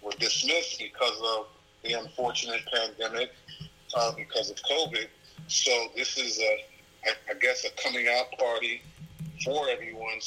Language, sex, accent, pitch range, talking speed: English, male, American, 110-145 Hz, 135 wpm